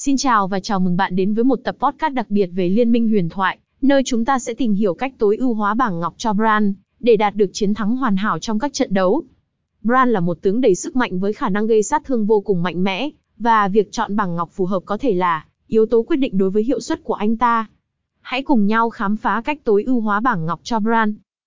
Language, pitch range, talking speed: Vietnamese, 205-250 Hz, 265 wpm